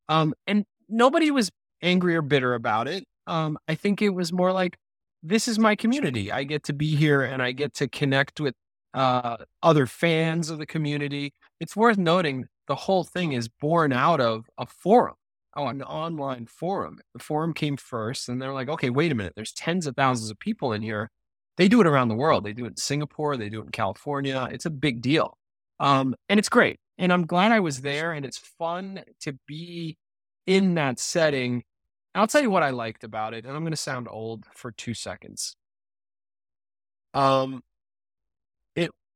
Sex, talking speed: male, 195 wpm